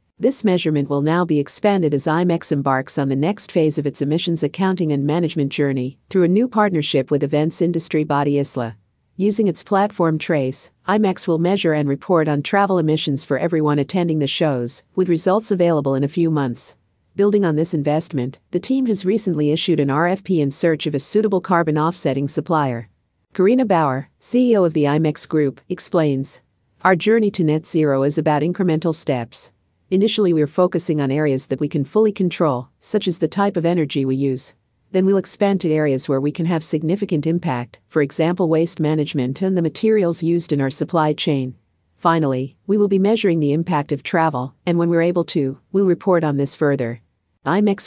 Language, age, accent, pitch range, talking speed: English, 50-69, American, 140-180 Hz, 190 wpm